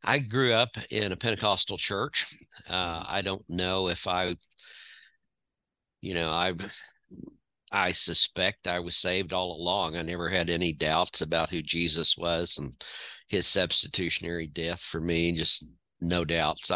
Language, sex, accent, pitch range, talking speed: English, male, American, 85-105 Hz, 145 wpm